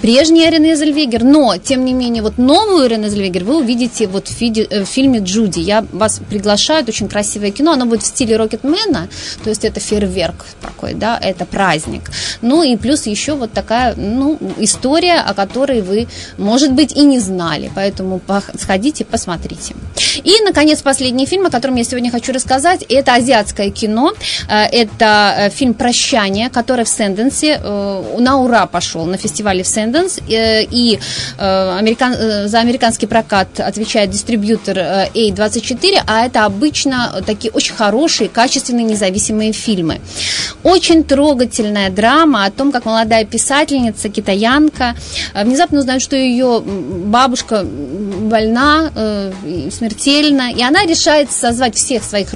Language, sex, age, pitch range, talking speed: Russian, female, 20-39, 210-270 Hz, 140 wpm